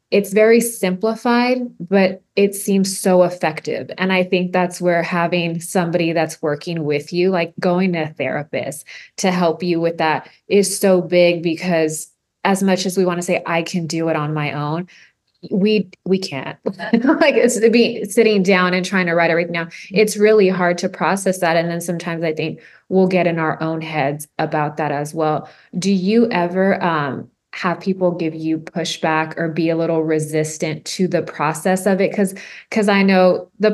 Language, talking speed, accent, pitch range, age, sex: English, 190 wpm, American, 160-190 Hz, 20-39, female